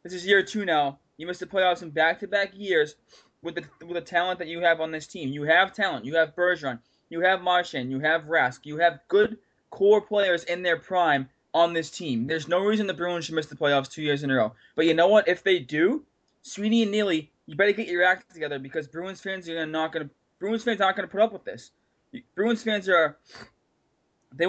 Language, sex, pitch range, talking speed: English, male, 150-190 Hz, 235 wpm